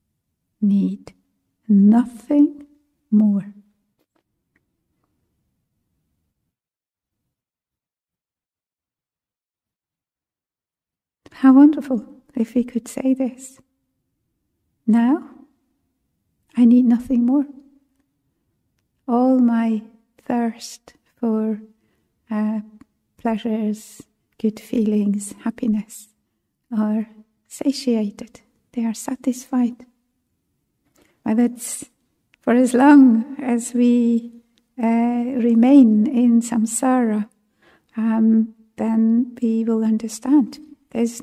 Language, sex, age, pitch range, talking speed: English, female, 60-79, 220-260 Hz, 65 wpm